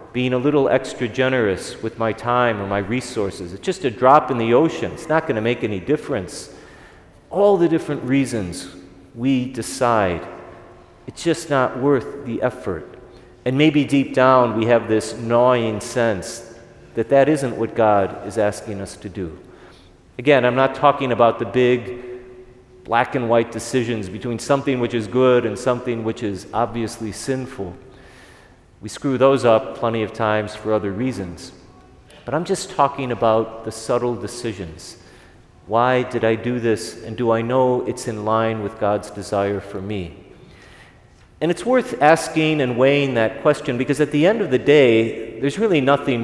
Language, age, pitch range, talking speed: English, 40-59, 110-130 Hz, 170 wpm